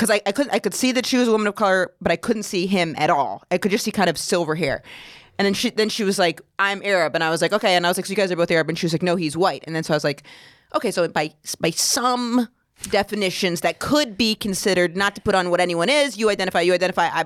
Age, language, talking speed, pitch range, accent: 30-49, English, 305 wpm, 180-245 Hz, American